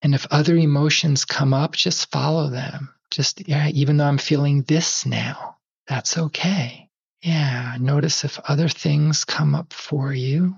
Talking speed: 160 wpm